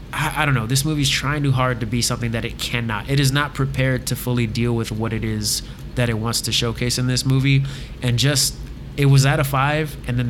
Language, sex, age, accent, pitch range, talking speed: English, male, 20-39, American, 125-165 Hz, 250 wpm